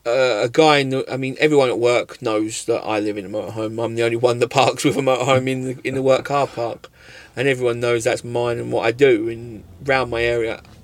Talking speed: 255 wpm